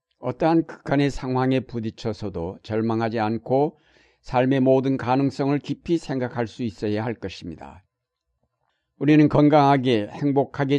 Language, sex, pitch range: Korean, male, 110-140 Hz